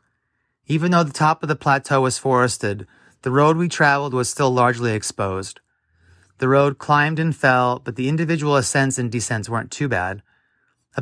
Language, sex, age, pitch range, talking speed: English, male, 30-49, 110-140 Hz, 175 wpm